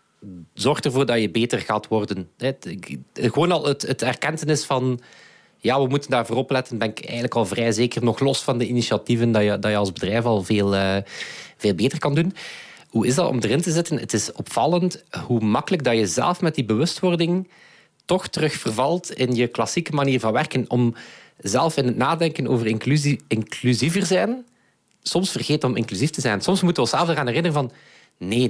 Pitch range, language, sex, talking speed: 115-145 Hz, English, male, 200 wpm